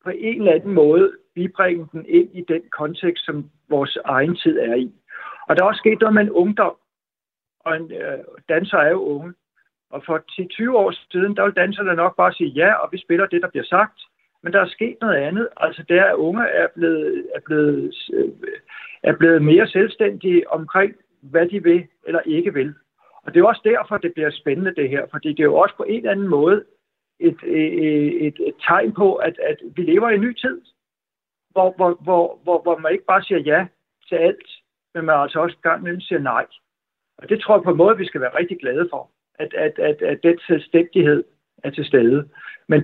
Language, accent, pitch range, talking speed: Danish, native, 165-225 Hz, 215 wpm